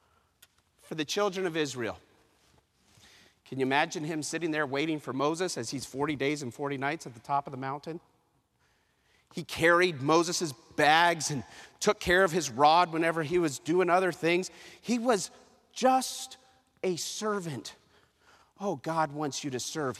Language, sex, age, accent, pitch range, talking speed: English, male, 40-59, American, 145-210 Hz, 160 wpm